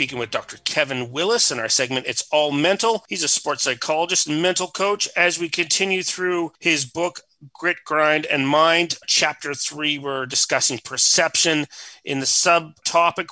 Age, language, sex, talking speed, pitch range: 30-49, English, male, 160 wpm, 145-170 Hz